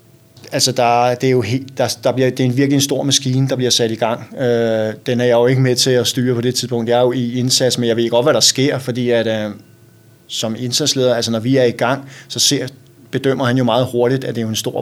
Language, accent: Danish, native